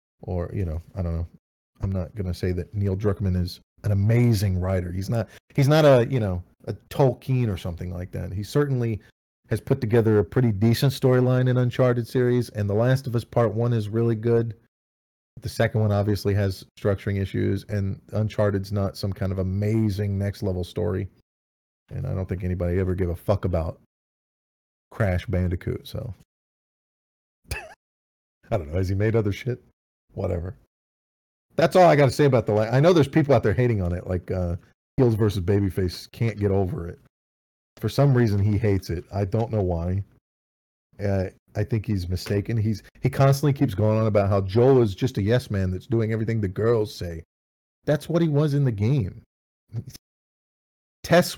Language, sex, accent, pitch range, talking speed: English, male, American, 95-120 Hz, 190 wpm